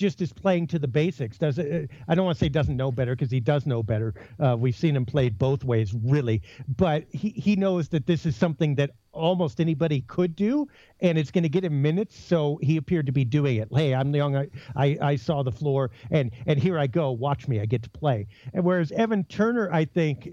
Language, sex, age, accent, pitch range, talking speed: English, male, 50-69, American, 140-190 Hz, 240 wpm